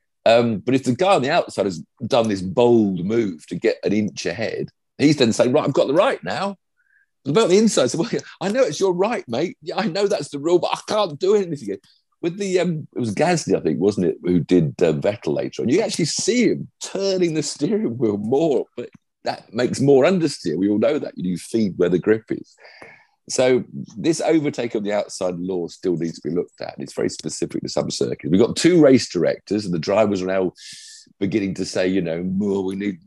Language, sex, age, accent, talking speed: English, male, 50-69, British, 235 wpm